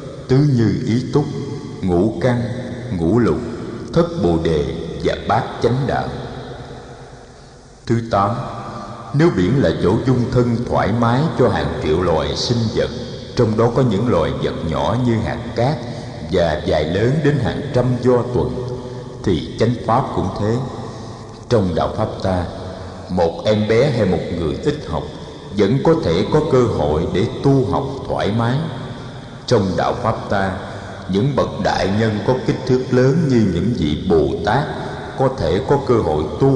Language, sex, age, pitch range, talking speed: Vietnamese, male, 60-79, 100-130 Hz, 160 wpm